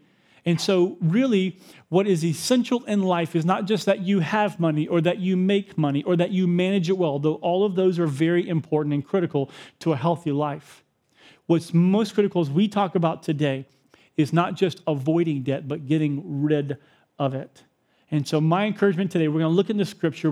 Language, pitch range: English, 150-195 Hz